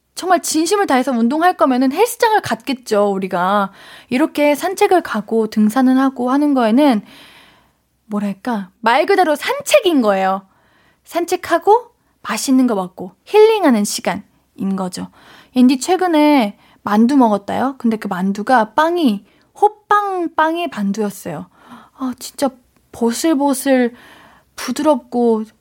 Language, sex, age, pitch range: Korean, female, 20-39, 210-295 Hz